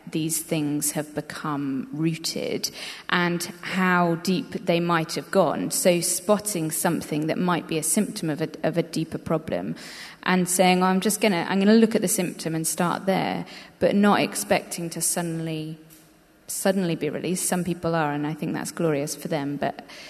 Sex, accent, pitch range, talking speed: female, British, 160-185 Hz, 180 wpm